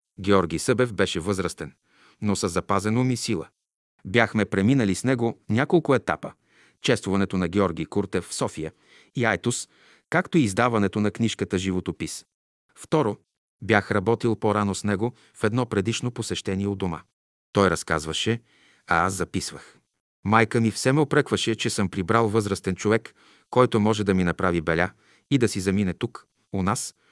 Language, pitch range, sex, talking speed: Bulgarian, 90-115 Hz, male, 155 wpm